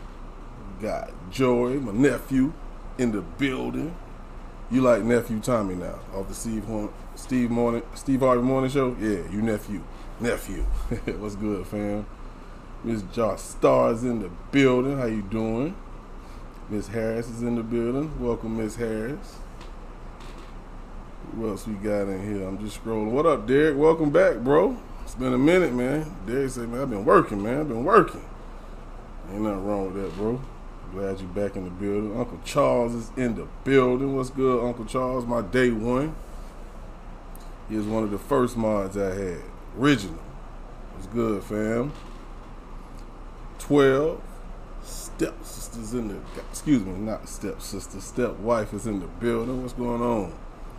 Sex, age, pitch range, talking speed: male, 20-39, 100-120 Hz, 155 wpm